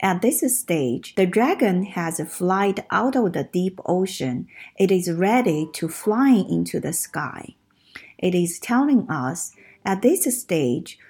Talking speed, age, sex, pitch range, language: 150 wpm, 50-69, female, 155-210 Hz, English